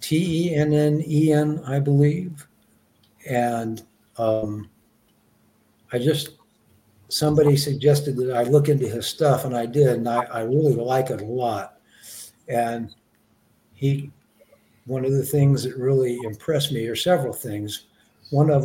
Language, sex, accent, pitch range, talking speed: English, male, American, 115-145 Hz, 130 wpm